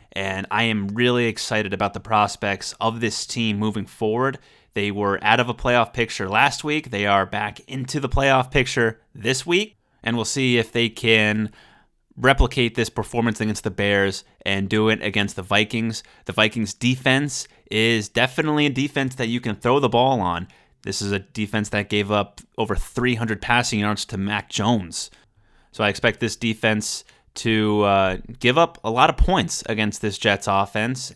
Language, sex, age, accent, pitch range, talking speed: English, male, 30-49, American, 100-120 Hz, 180 wpm